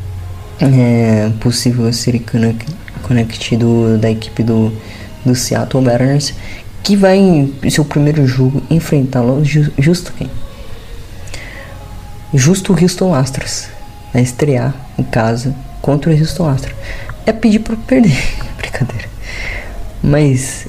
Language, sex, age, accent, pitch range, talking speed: Portuguese, female, 20-39, Brazilian, 110-135 Hz, 115 wpm